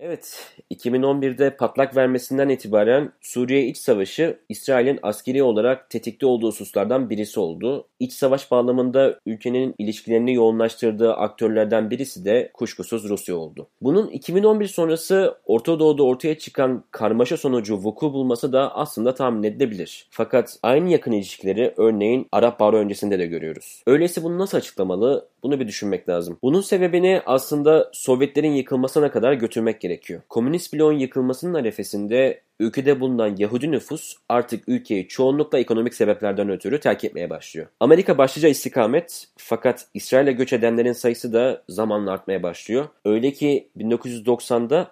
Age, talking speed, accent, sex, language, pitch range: 30-49, 135 wpm, native, male, Turkish, 115-145 Hz